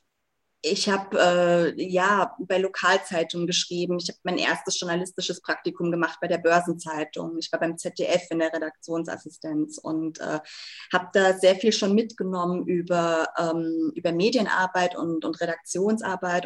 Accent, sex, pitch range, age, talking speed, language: German, female, 170-205 Hz, 20-39, 135 wpm, German